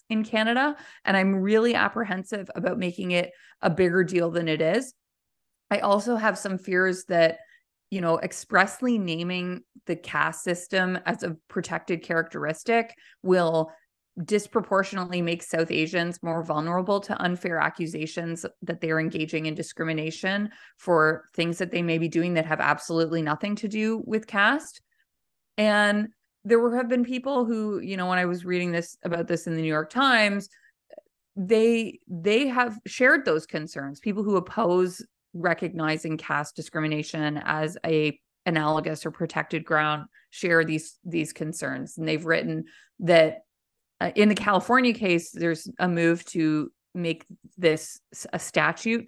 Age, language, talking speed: 20-39, English, 150 wpm